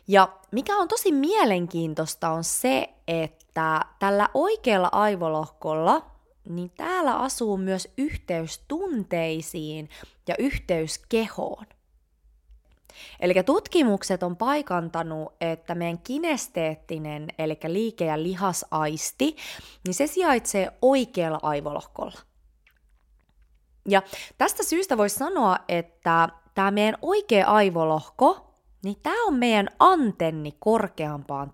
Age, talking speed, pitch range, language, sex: 20-39, 95 wpm, 160-245 Hz, Finnish, female